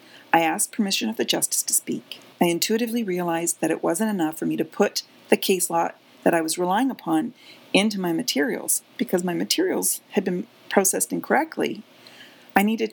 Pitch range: 165-225 Hz